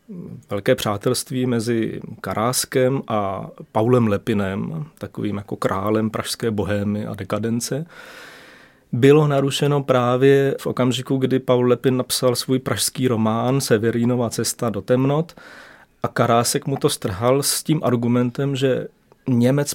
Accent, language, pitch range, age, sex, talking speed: native, Czech, 110-130 Hz, 30-49, male, 120 wpm